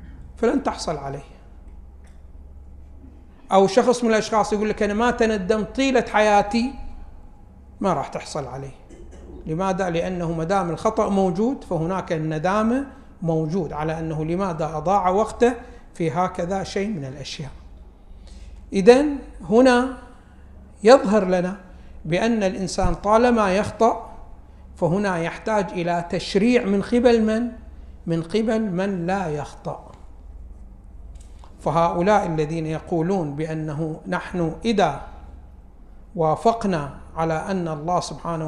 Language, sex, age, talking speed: Arabic, male, 60-79, 105 wpm